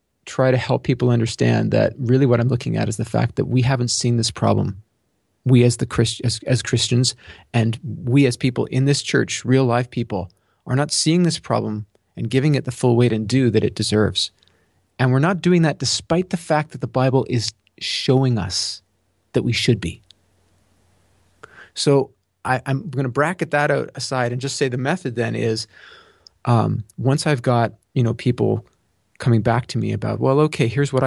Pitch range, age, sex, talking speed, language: 110-135 Hz, 30-49, male, 200 wpm, English